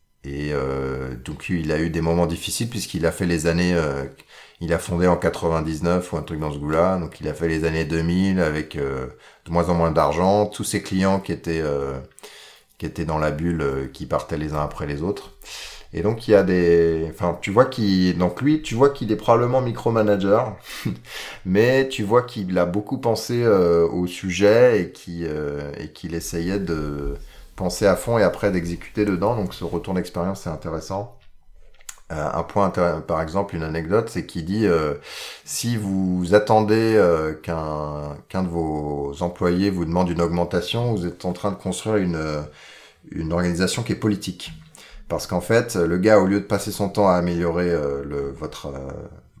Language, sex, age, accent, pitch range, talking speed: French, male, 30-49, French, 80-100 Hz, 195 wpm